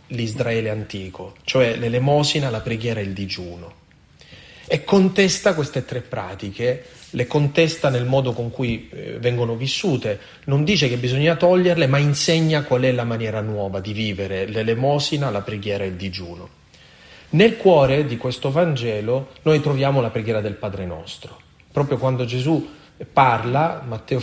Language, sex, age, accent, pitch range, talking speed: Italian, male, 30-49, native, 110-145 Hz, 145 wpm